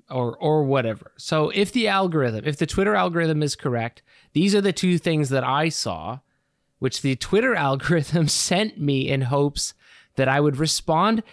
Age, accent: 20-39, American